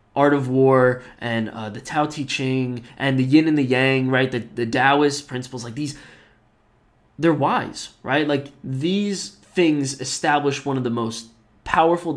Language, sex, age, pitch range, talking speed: English, male, 20-39, 115-140 Hz, 170 wpm